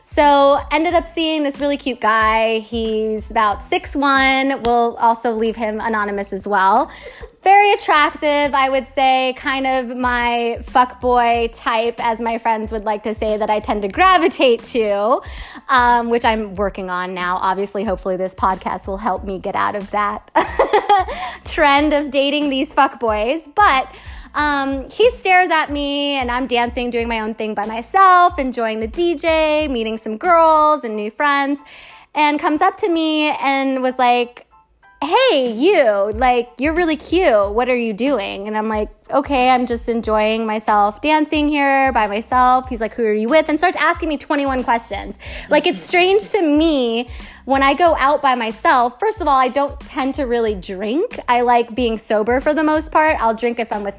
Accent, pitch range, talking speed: American, 225-290 Hz, 180 wpm